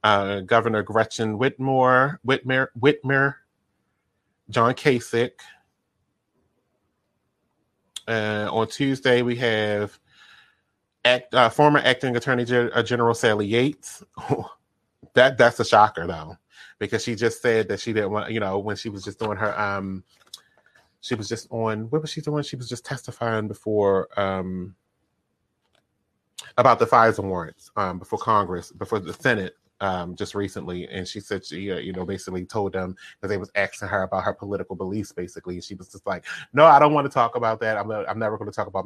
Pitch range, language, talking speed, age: 100-125 Hz, English, 165 wpm, 30-49